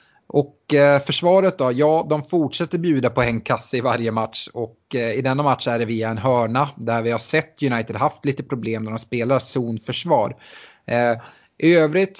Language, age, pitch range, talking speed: Swedish, 30-49, 115-145 Hz, 180 wpm